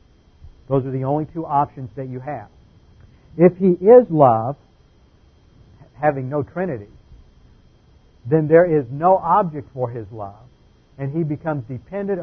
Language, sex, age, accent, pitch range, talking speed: English, male, 60-79, American, 125-150 Hz, 135 wpm